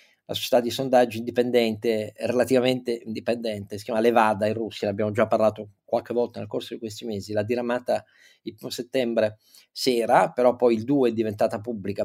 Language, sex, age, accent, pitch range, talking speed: Italian, male, 40-59, native, 115-135 Hz, 175 wpm